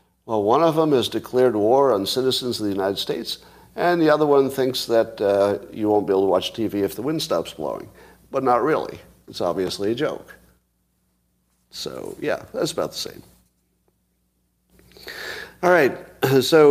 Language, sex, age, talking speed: English, male, 50-69, 170 wpm